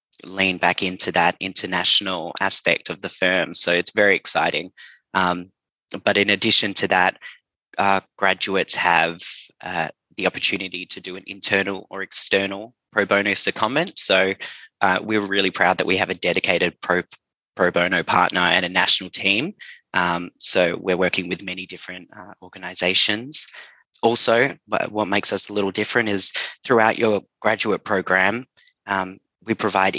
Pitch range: 90-105 Hz